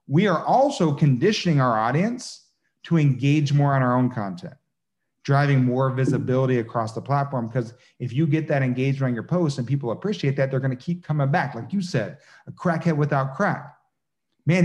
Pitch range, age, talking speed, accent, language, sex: 135-175 Hz, 40-59, 185 wpm, American, English, male